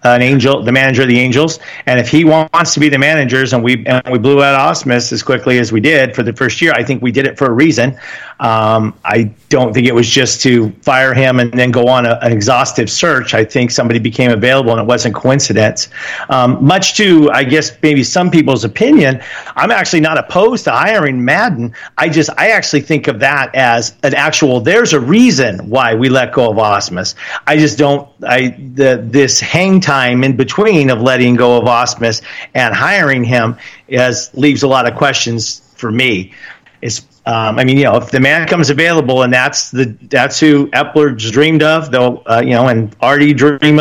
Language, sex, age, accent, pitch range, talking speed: English, male, 40-59, American, 120-150 Hz, 205 wpm